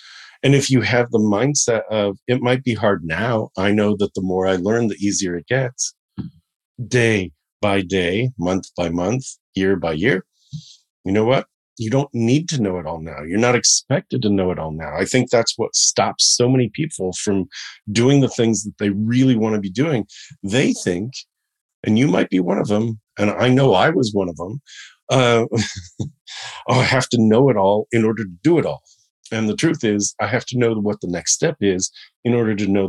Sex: male